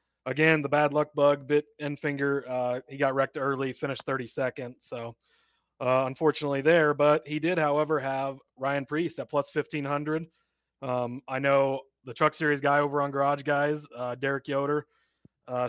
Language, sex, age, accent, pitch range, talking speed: English, male, 20-39, American, 135-155 Hz, 170 wpm